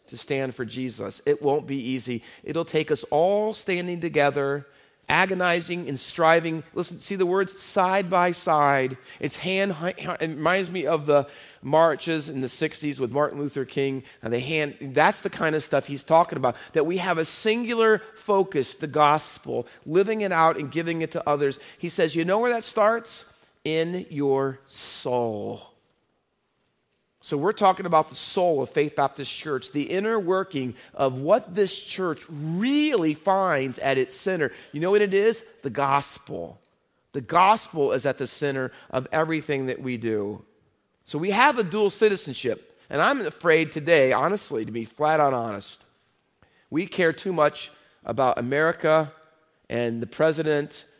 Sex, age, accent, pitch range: male, 40-59, American, 135-180 Hz